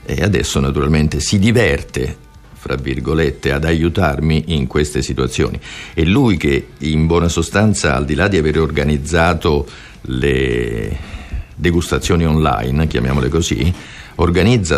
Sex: male